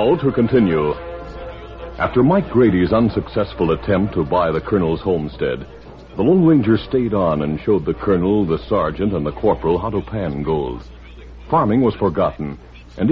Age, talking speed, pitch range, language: 60-79, 160 wpm, 70-100 Hz, English